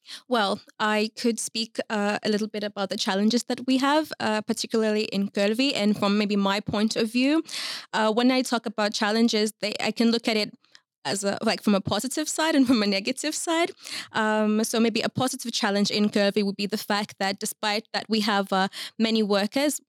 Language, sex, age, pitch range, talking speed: Finnish, female, 20-39, 210-235 Hz, 210 wpm